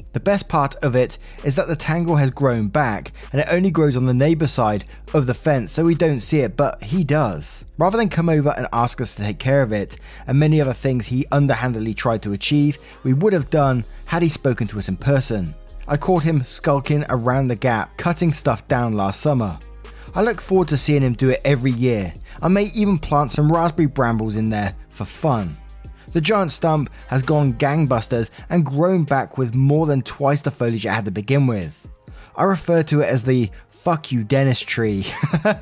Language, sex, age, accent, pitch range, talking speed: English, male, 20-39, British, 115-145 Hz, 210 wpm